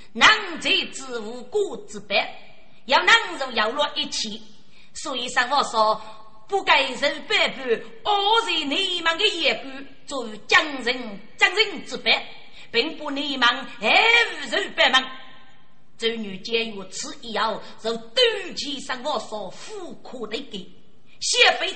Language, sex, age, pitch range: Chinese, female, 30-49, 220-320 Hz